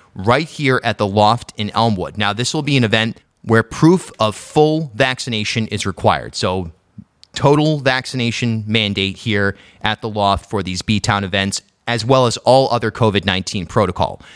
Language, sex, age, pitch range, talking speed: English, male, 30-49, 105-130 Hz, 165 wpm